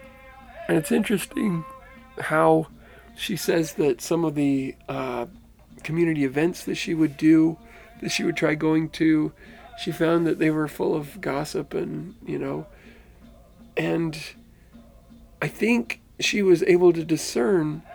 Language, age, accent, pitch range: English, 40-59, American, 145-190 Hz